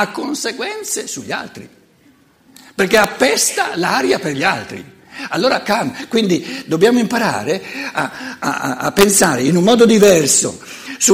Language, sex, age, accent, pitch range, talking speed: Italian, male, 60-79, native, 170-240 Hz, 125 wpm